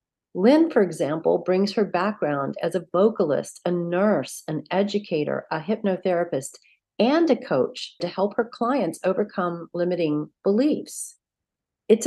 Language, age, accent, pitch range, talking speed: English, 40-59, American, 170-225 Hz, 130 wpm